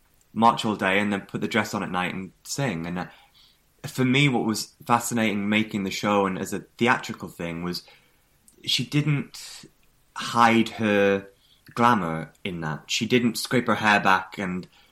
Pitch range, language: 95-120 Hz, English